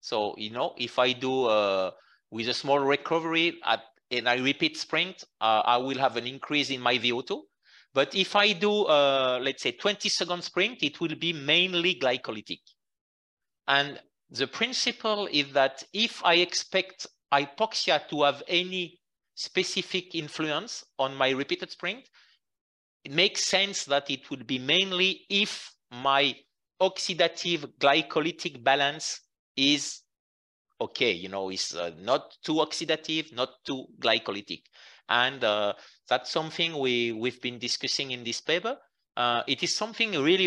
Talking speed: 140 wpm